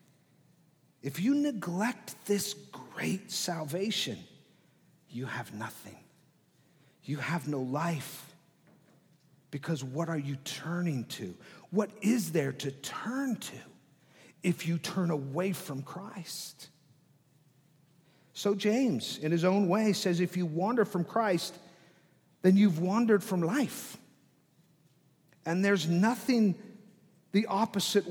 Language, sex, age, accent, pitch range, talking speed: English, male, 50-69, American, 150-195 Hz, 115 wpm